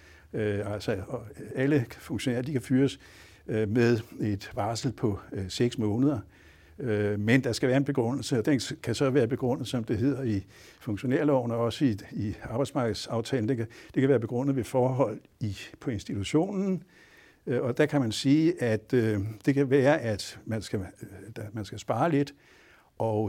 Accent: Danish